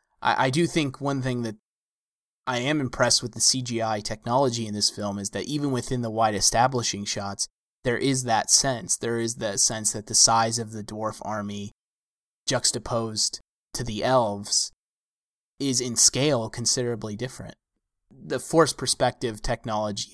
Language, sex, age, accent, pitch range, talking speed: English, male, 20-39, American, 105-135 Hz, 155 wpm